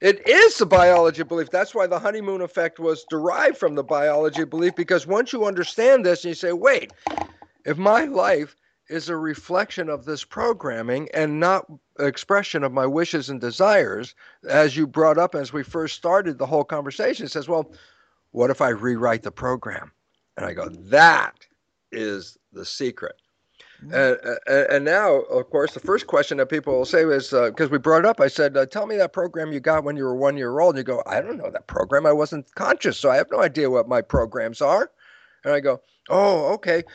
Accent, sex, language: American, male, English